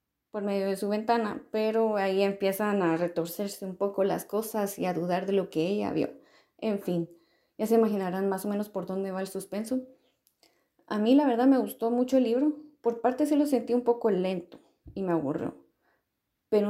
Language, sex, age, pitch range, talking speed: Spanish, female, 30-49, 185-240 Hz, 200 wpm